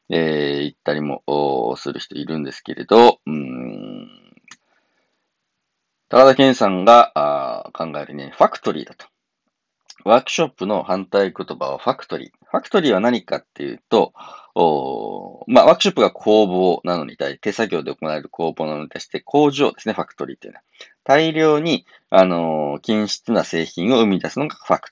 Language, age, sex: Japanese, 40-59, male